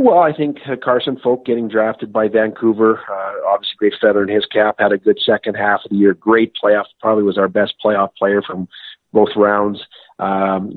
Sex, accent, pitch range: male, American, 105-120 Hz